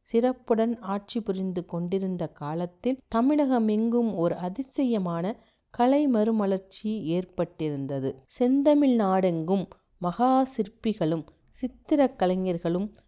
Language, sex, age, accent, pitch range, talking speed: Tamil, female, 40-59, native, 170-240 Hz, 85 wpm